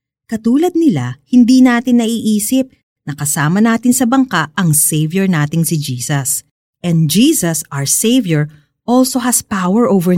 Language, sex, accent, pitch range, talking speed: Filipino, female, native, 150-255 Hz, 135 wpm